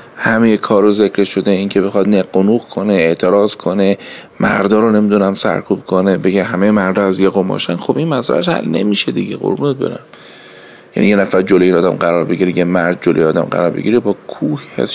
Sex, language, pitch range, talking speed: male, Persian, 100-120 Hz, 175 wpm